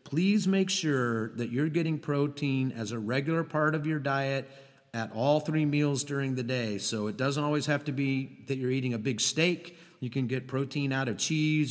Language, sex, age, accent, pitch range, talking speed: English, male, 40-59, American, 120-150 Hz, 210 wpm